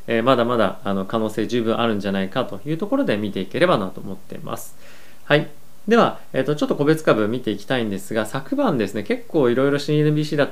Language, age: Japanese, 20-39